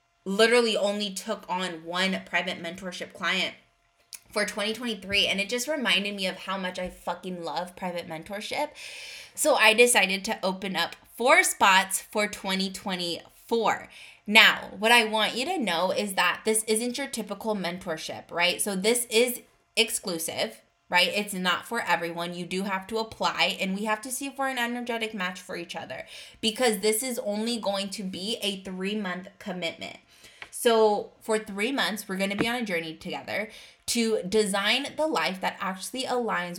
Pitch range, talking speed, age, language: 180-230 Hz, 170 wpm, 20-39, English